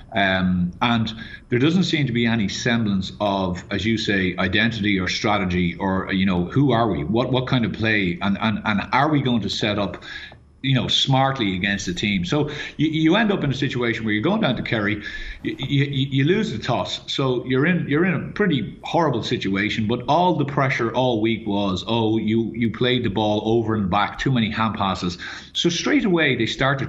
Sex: male